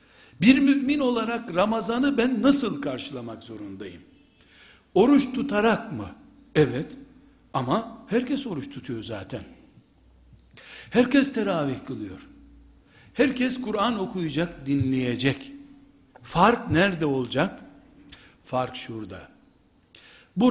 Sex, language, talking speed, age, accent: male, Turkish, 90 wpm, 60-79, native